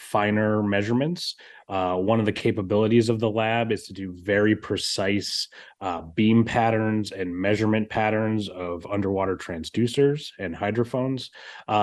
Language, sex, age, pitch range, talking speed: English, male, 30-49, 95-115 Hz, 135 wpm